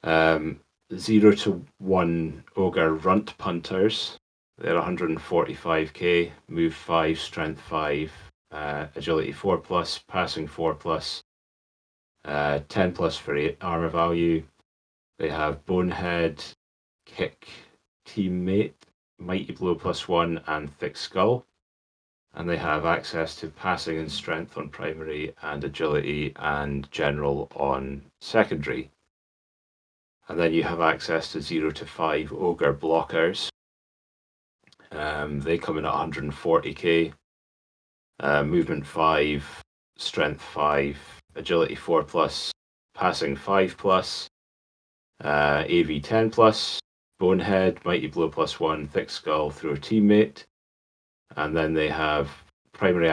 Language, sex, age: English, male, 30-49